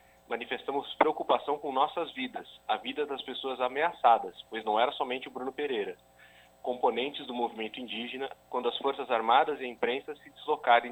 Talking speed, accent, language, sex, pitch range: 165 wpm, Brazilian, Portuguese, male, 95-130 Hz